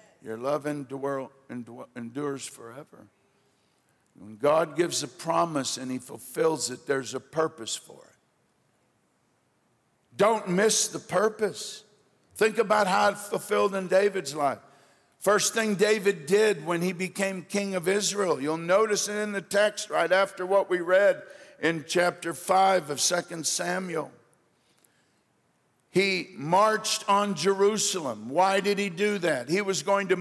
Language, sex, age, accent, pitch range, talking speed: English, male, 60-79, American, 165-200 Hz, 145 wpm